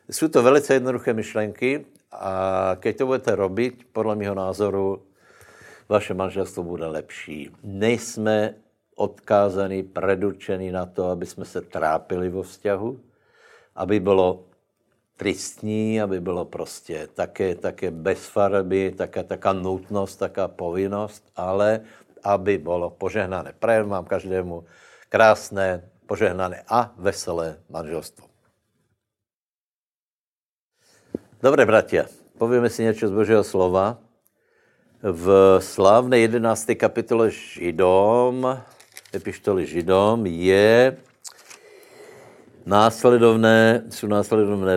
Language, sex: Slovak, male